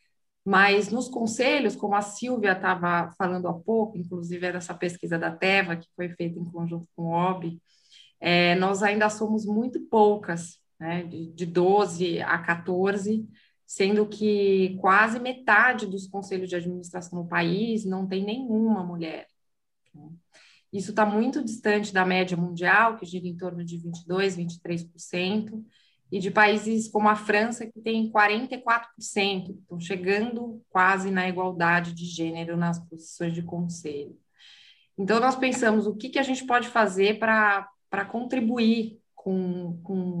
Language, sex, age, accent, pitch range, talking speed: Portuguese, female, 20-39, Brazilian, 175-215 Hz, 145 wpm